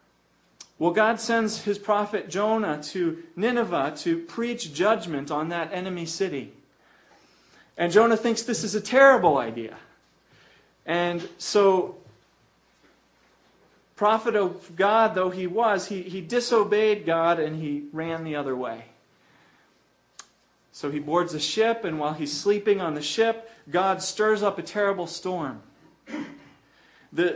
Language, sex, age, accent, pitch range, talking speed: English, male, 40-59, American, 165-215 Hz, 130 wpm